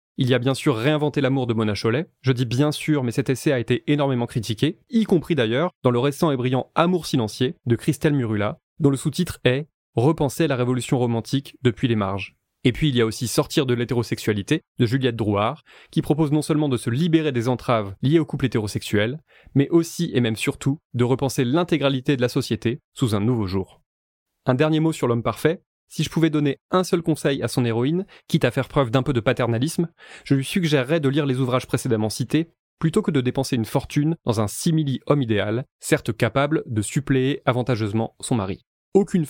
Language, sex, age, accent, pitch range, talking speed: French, male, 20-39, French, 120-155 Hz, 220 wpm